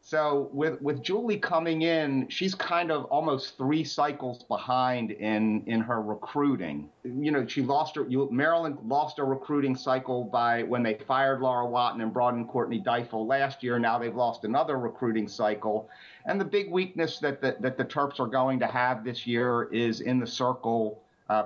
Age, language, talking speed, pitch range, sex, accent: 50-69, English, 180 wpm, 115-135 Hz, male, American